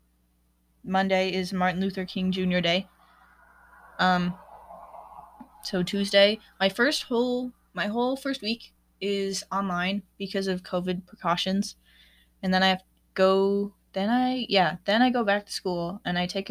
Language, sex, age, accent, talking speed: English, female, 20-39, American, 145 wpm